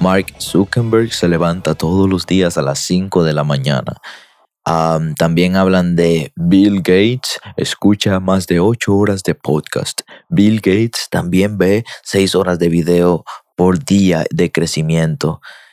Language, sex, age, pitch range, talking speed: Spanish, male, 20-39, 90-115 Hz, 145 wpm